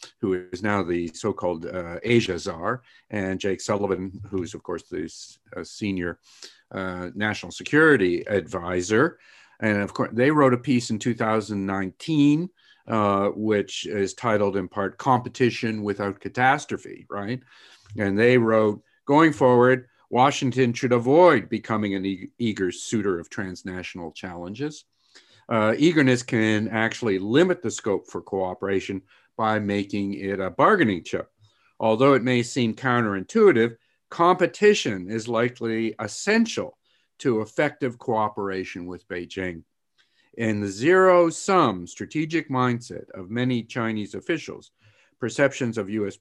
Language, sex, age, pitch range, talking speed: English, male, 50-69, 100-125 Hz, 125 wpm